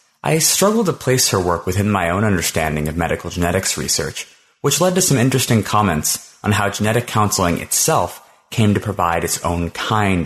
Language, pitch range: English, 85-120 Hz